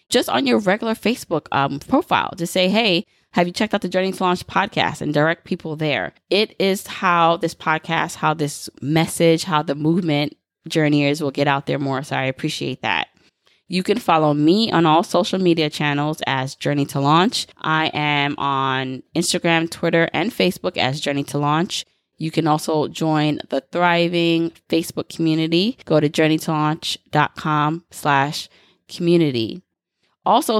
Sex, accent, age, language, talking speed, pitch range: female, American, 20-39, English, 160 wpm, 145-175 Hz